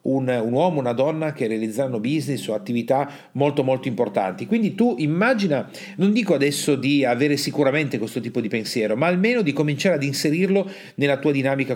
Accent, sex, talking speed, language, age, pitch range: native, male, 175 wpm, Italian, 40-59, 130-175 Hz